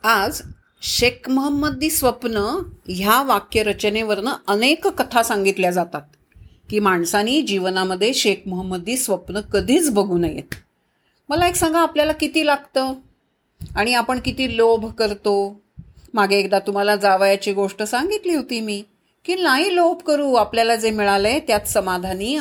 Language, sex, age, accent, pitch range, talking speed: Marathi, female, 40-59, native, 195-240 Hz, 130 wpm